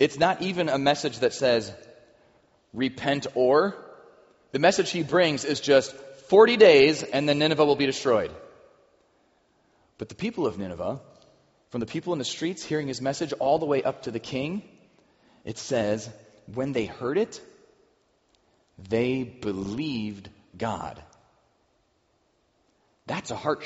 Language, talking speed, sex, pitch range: English, 140 wpm, male, 105-145 Hz